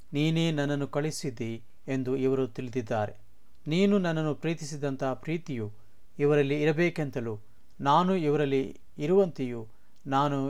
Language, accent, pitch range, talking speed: Kannada, native, 125-160 Hz, 90 wpm